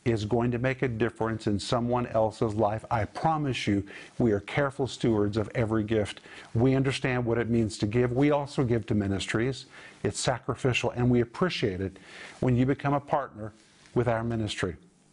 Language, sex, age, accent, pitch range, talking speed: English, male, 50-69, American, 120-150 Hz, 180 wpm